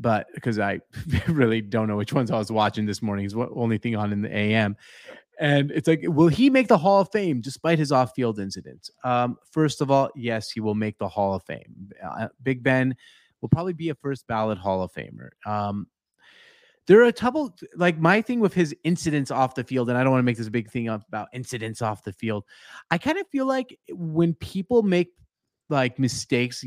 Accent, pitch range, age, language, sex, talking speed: American, 115-150 Hz, 30-49, English, male, 220 wpm